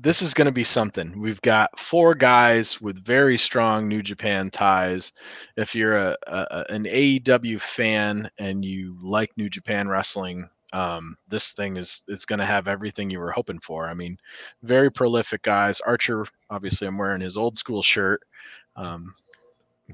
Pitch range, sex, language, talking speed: 100-140 Hz, male, English, 170 wpm